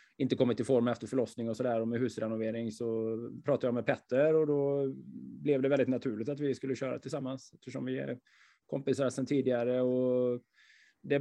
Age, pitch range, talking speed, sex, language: 20-39, 120-140 Hz, 185 wpm, male, Swedish